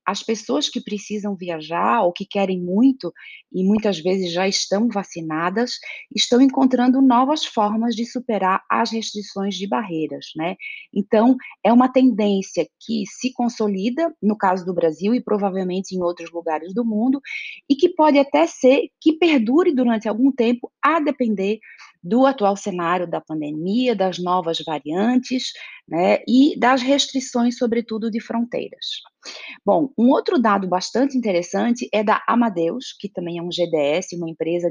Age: 30-49